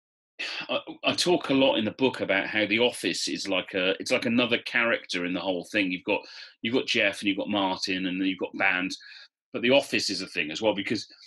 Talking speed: 245 wpm